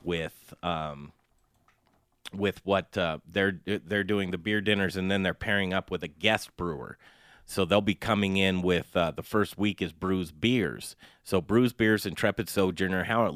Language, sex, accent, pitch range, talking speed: English, male, American, 95-115 Hz, 180 wpm